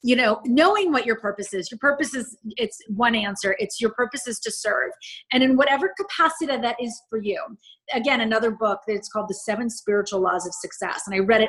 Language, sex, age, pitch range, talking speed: English, female, 30-49, 200-245 Hz, 230 wpm